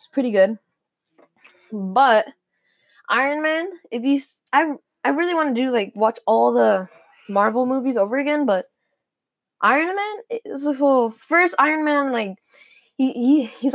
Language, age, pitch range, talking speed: English, 10-29, 215-275 Hz, 150 wpm